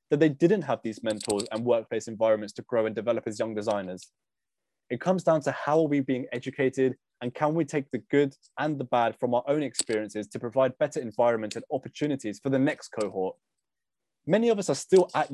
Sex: male